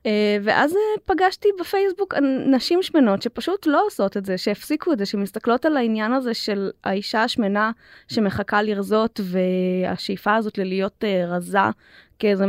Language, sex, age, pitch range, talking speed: Hebrew, female, 20-39, 205-265 Hz, 130 wpm